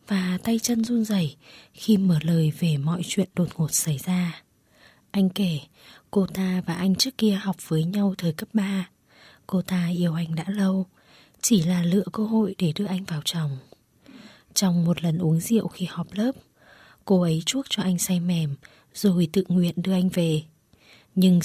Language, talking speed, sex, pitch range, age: Vietnamese, 185 wpm, female, 165-195 Hz, 20-39